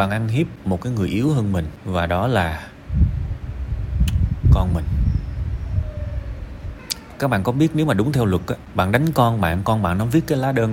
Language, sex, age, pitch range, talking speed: Vietnamese, male, 20-39, 85-115 Hz, 195 wpm